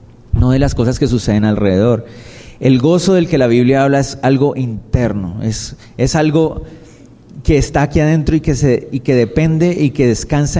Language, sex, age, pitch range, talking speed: Spanish, male, 30-49, 115-140 Hz, 175 wpm